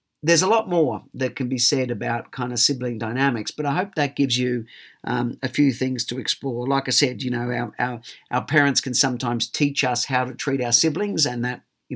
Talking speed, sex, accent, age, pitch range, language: 225 wpm, male, Australian, 50-69, 120-140 Hz, English